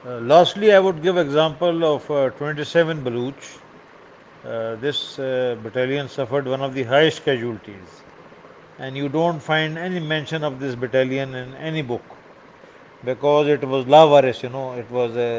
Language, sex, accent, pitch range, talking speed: English, male, Indian, 125-155 Hz, 165 wpm